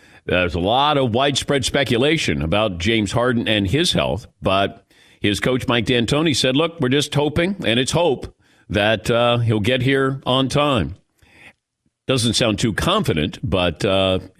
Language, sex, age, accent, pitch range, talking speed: English, male, 50-69, American, 110-155 Hz, 160 wpm